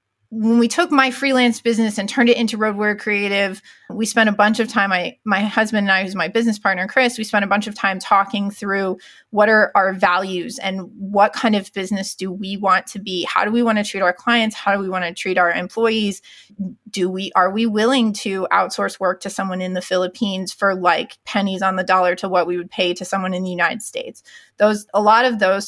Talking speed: 235 wpm